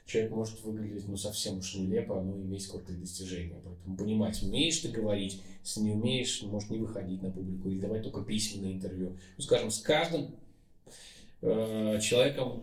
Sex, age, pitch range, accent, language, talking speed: male, 20-39, 95-125 Hz, native, Ukrainian, 165 wpm